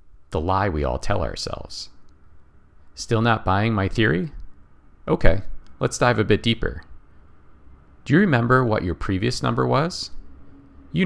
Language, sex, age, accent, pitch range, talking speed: English, male, 40-59, American, 75-105 Hz, 135 wpm